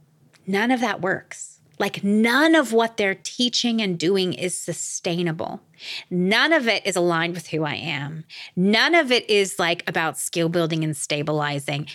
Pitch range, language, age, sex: 180-245 Hz, English, 30-49, female